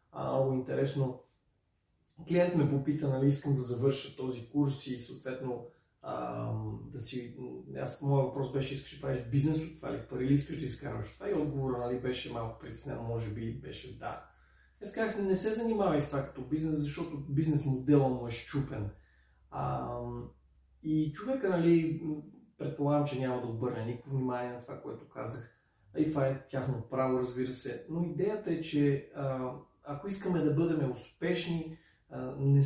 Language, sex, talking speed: Bulgarian, male, 165 wpm